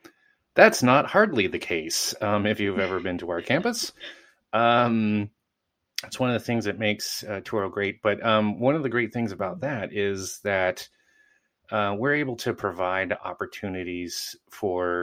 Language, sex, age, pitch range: English, male, 30-49, 90-115 Hz